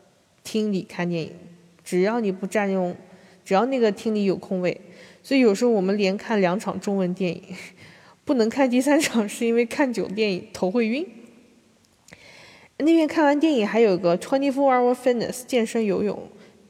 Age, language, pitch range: 20-39, Chinese, 185-235 Hz